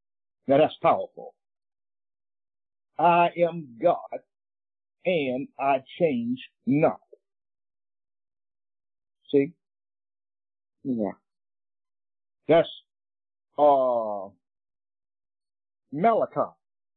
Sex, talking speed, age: male, 55 wpm, 60-79